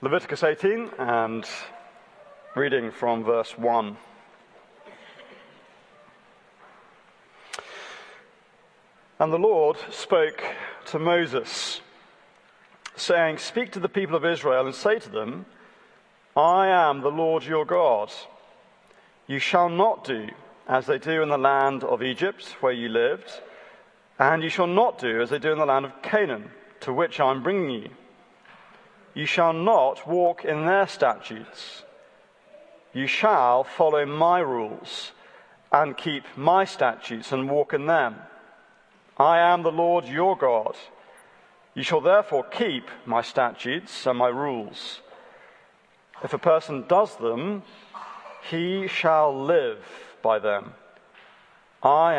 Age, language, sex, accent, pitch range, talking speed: 40-59, English, male, British, 135-200 Hz, 125 wpm